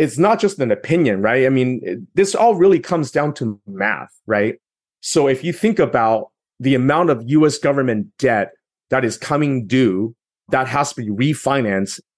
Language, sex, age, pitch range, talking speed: English, male, 30-49, 120-170 Hz, 180 wpm